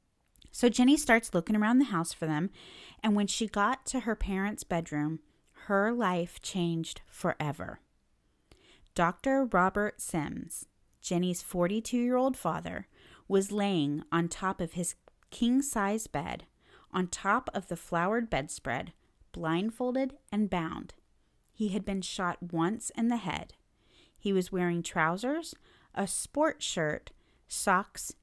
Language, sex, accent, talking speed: English, female, American, 130 wpm